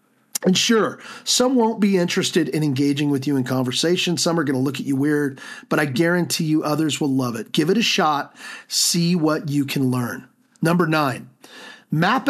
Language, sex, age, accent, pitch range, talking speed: English, male, 40-59, American, 150-215 Hz, 195 wpm